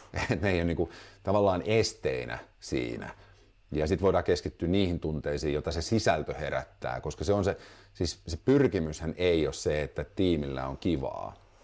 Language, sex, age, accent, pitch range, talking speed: Finnish, male, 50-69, native, 75-100 Hz, 170 wpm